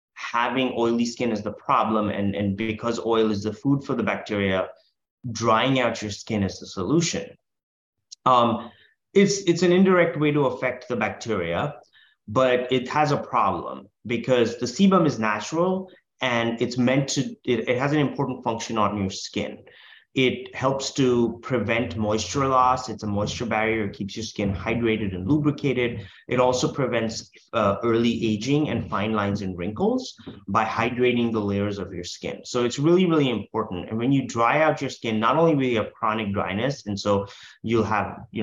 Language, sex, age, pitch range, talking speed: English, male, 30-49, 105-130 Hz, 180 wpm